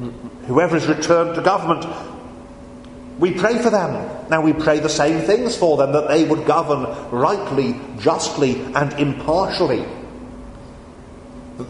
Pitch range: 120-160 Hz